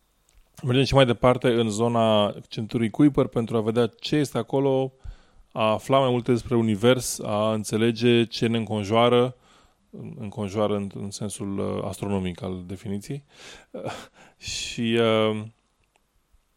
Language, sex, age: English, male, 20-39